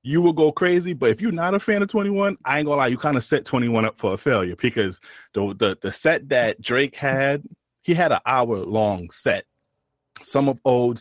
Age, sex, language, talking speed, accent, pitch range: 30-49, male, English, 230 wpm, American, 110-135 Hz